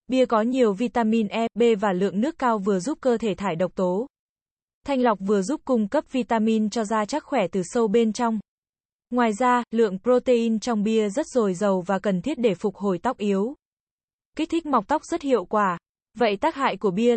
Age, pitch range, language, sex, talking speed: 20-39, 205-245 Hz, Vietnamese, female, 215 wpm